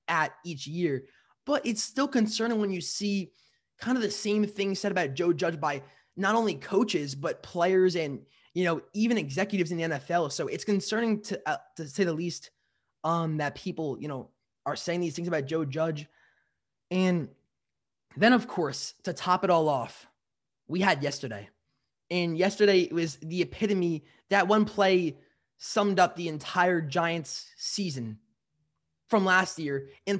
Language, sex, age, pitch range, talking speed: English, male, 20-39, 155-205 Hz, 165 wpm